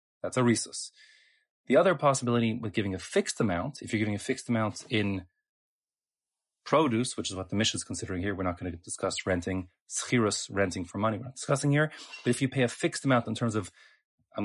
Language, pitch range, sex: English, 105-130 Hz, male